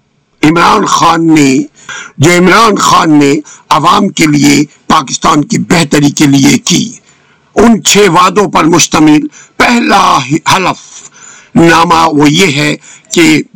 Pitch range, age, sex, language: 150-200 Hz, 50-69, male, Urdu